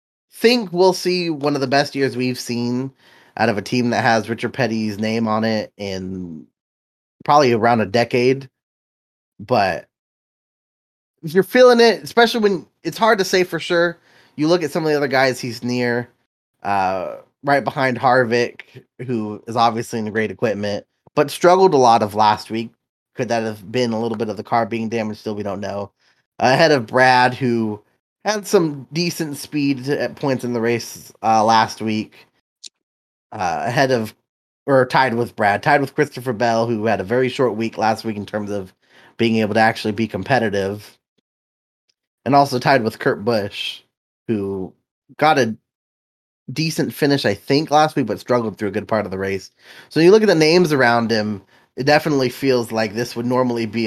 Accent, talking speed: American, 185 wpm